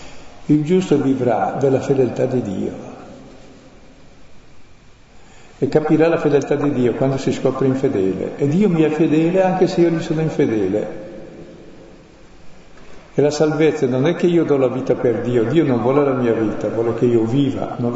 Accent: native